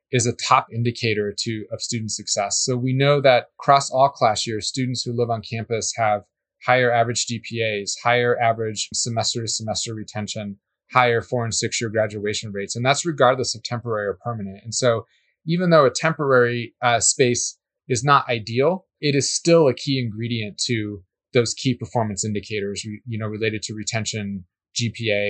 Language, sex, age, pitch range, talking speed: English, male, 20-39, 105-125 Hz, 175 wpm